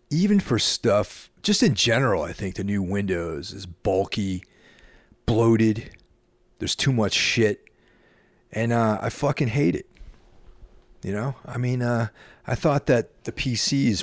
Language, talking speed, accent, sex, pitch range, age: English, 145 wpm, American, male, 85-110 Hz, 40-59